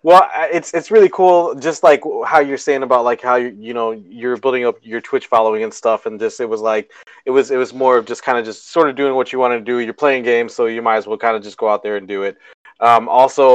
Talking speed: 290 wpm